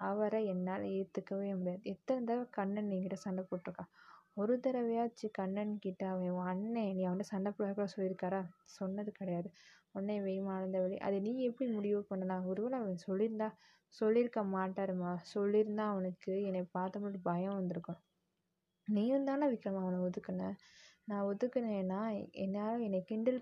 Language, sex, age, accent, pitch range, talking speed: Tamil, female, 20-39, native, 185-210 Hz, 130 wpm